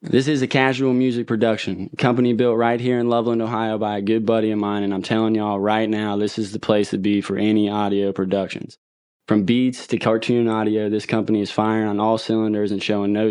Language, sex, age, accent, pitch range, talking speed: English, male, 20-39, American, 105-120 Hz, 225 wpm